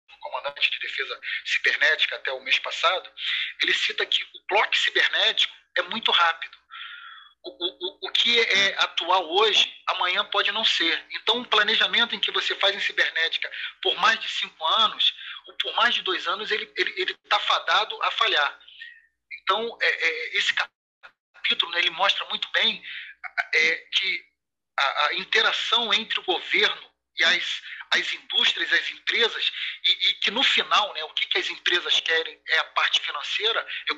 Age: 40-59